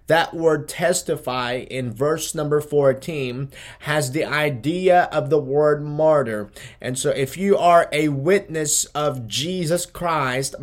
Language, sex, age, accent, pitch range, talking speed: English, male, 20-39, American, 130-155 Hz, 135 wpm